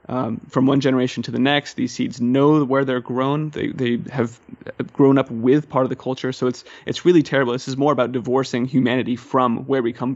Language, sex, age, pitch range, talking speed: English, male, 30-49, 120-140 Hz, 225 wpm